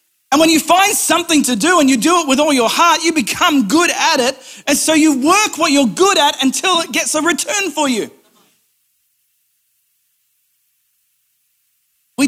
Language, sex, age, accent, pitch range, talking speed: English, male, 40-59, Australian, 195-285 Hz, 175 wpm